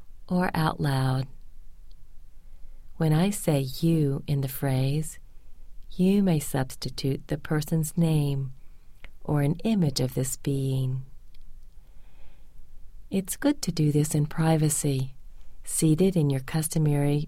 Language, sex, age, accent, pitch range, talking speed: English, female, 40-59, American, 125-160 Hz, 115 wpm